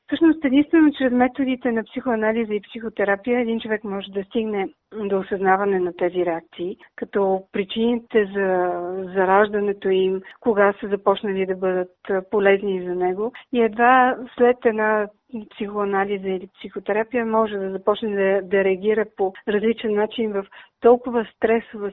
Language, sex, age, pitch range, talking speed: Bulgarian, female, 50-69, 195-230 Hz, 135 wpm